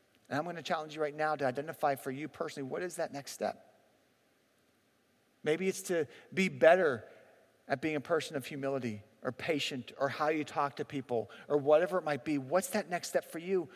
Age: 40-59